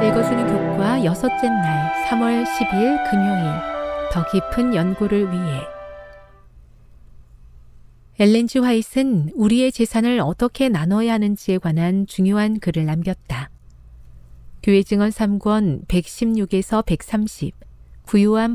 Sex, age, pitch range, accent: female, 40-59, 165-225 Hz, native